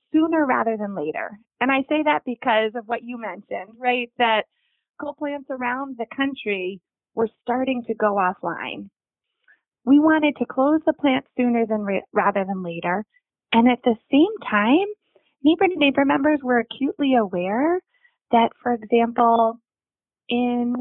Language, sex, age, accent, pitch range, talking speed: English, female, 30-49, American, 205-265 Hz, 155 wpm